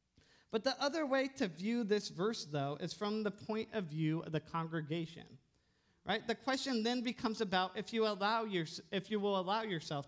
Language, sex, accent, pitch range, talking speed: English, male, American, 165-230 Hz, 195 wpm